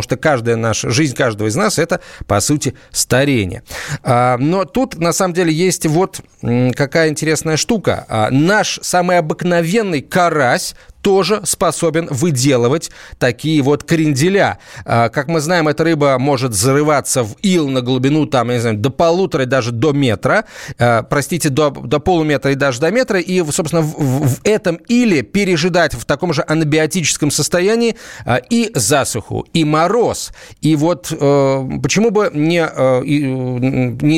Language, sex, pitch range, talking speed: Russian, male, 130-170 Hz, 145 wpm